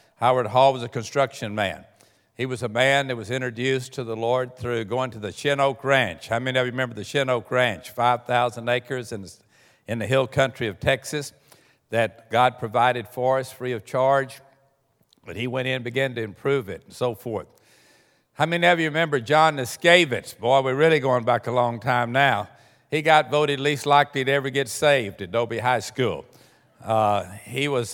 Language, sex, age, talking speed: English, male, 60-79, 200 wpm